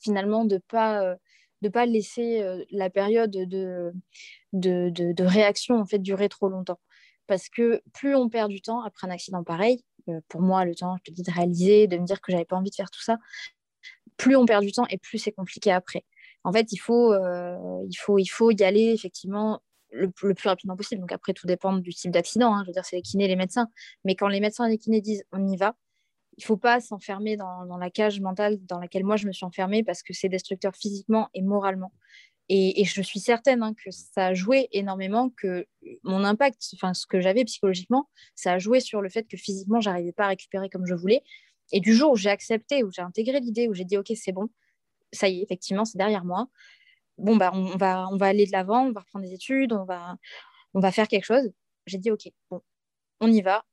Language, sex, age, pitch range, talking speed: French, female, 20-39, 185-225 Hz, 250 wpm